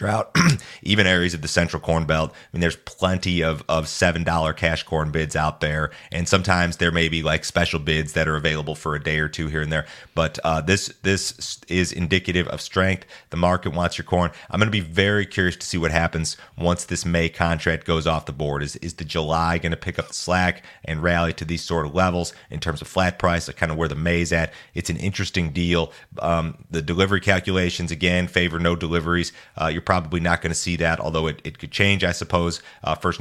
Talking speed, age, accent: 235 wpm, 30-49, American